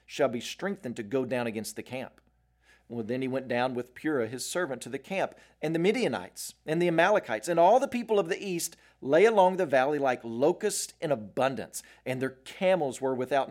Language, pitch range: English, 120-170 Hz